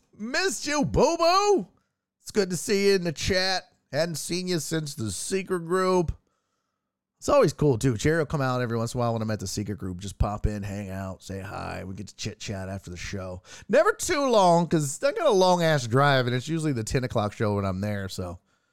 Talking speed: 230 wpm